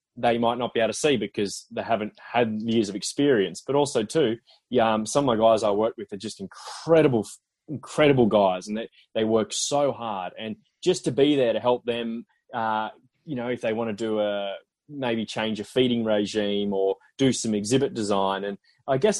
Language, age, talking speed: English, 20-39, 205 wpm